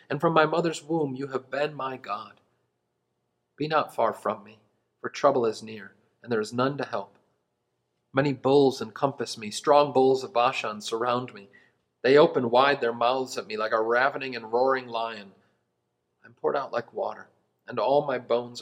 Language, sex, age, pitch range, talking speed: English, male, 40-59, 110-150 Hz, 185 wpm